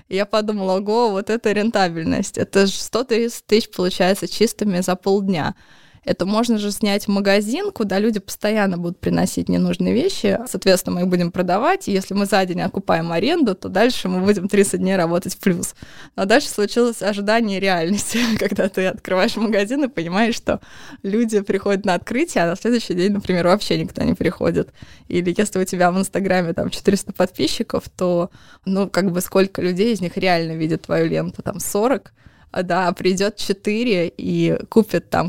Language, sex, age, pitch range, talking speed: Russian, female, 20-39, 180-215 Hz, 175 wpm